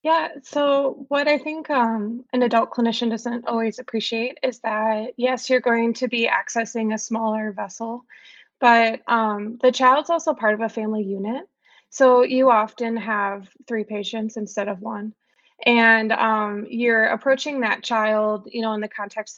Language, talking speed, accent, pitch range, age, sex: English, 165 wpm, American, 215-245 Hz, 20-39, female